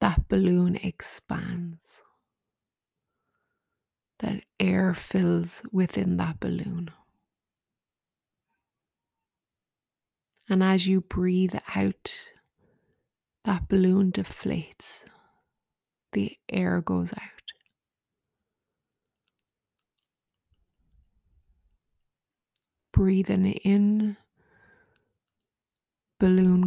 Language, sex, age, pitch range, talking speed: English, female, 20-39, 175-195 Hz, 55 wpm